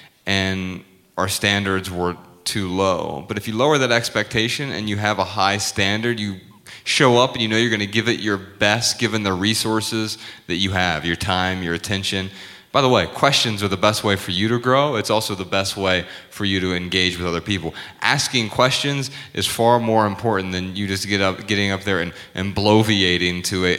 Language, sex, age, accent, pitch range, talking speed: English, male, 30-49, American, 95-115 Hz, 210 wpm